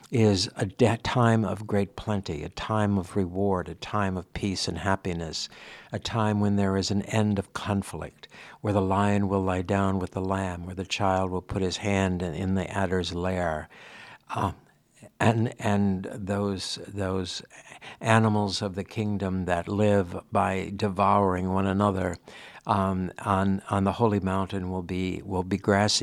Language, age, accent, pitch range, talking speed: English, 60-79, American, 95-115 Hz, 165 wpm